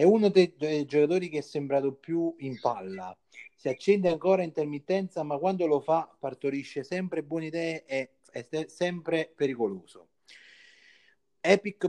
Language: Italian